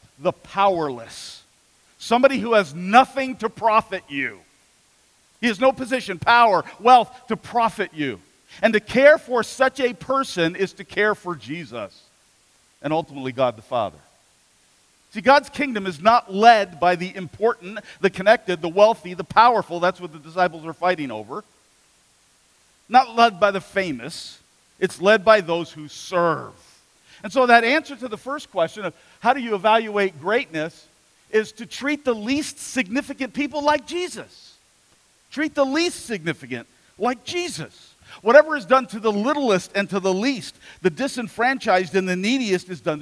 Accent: American